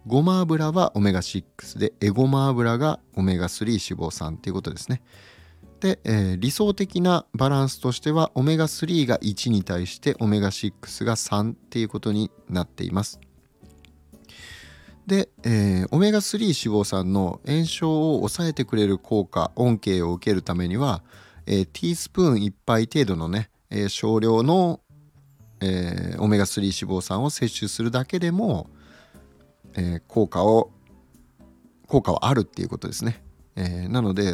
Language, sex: Japanese, male